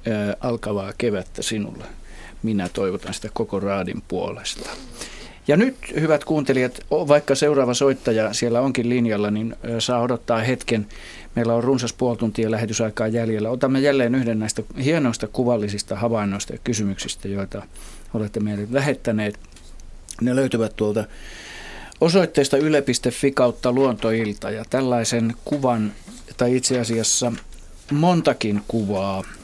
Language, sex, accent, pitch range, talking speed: Finnish, male, native, 105-125 Hz, 115 wpm